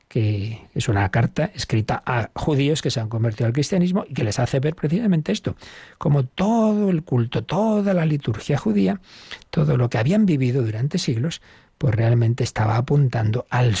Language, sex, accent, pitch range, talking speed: Spanish, male, Spanish, 110-140 Hz, 175 wpm